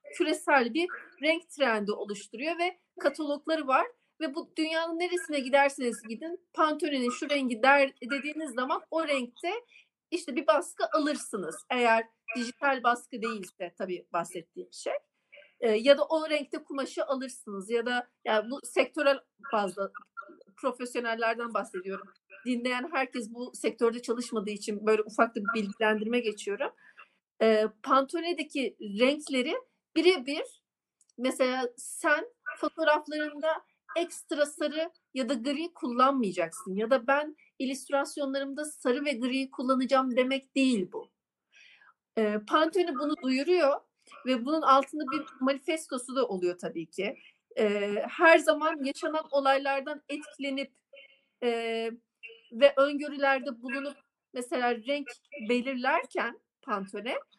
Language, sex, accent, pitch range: Turkish, female, native, 235-310 Hz